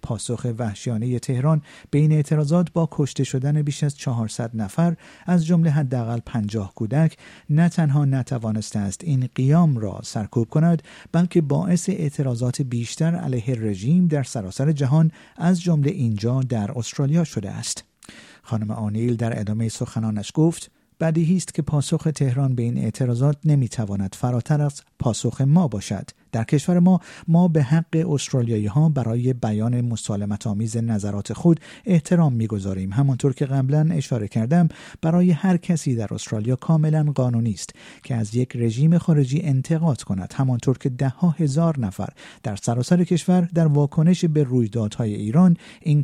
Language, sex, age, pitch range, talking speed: Persian, male, 50-69, 115-160 Hz, 145 wpm